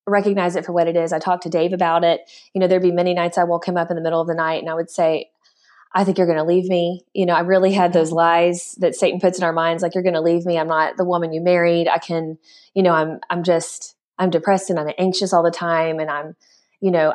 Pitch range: 165-185 Hz